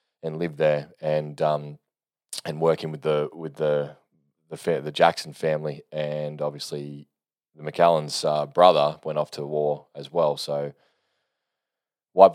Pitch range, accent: 75-80 Hz, Australian